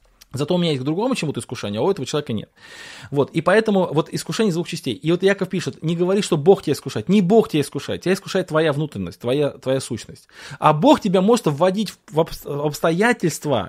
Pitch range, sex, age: 125-170 Hz, male, 20-39